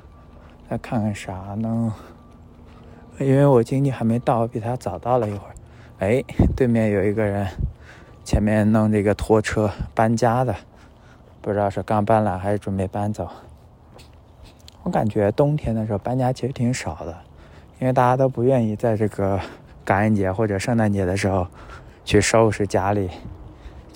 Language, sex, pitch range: Chinese, male, 95-120 Hz